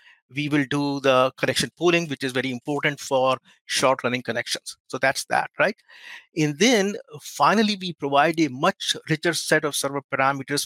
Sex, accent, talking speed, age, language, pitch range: male, Indian, 165 wpm, 50-69, English, 130-155 Hz